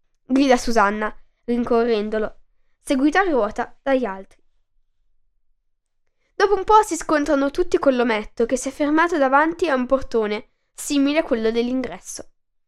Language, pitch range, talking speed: Italian, 230-305 Hz, 135 wpm